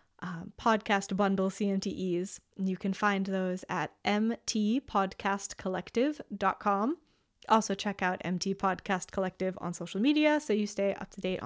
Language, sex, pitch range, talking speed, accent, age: English, female, 180-210 Hz, 120 wpm, American, 10-29